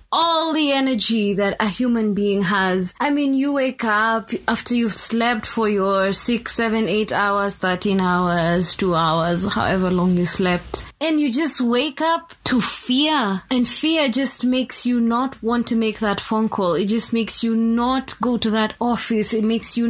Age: 20-39